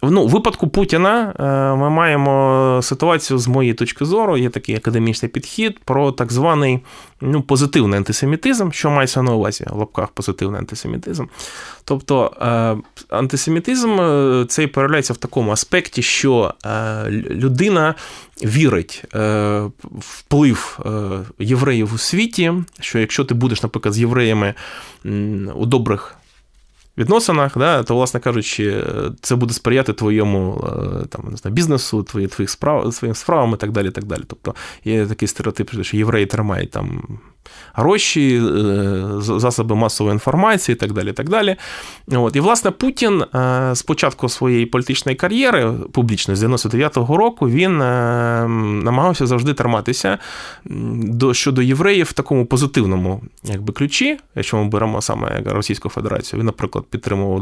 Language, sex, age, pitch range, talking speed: Ukrainian, male, 20-39, 110-140 Hz, 125 wpm